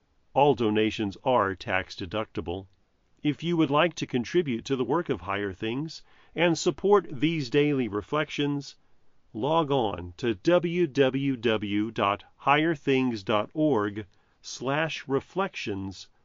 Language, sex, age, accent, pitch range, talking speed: English, male, 40-59, American, 105-160 Hz, 95 wpm